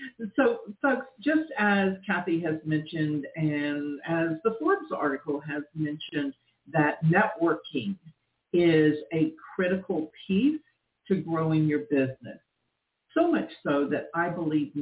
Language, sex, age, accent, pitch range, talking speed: English, female, 50-69, American, 145-200 Hz, 120 wpm